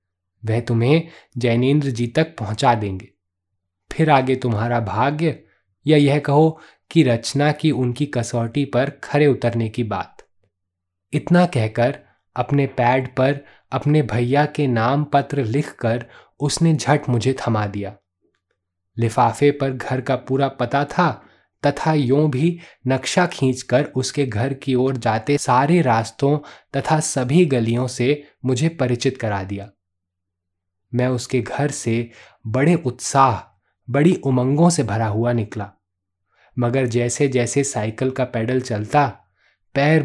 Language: Hindi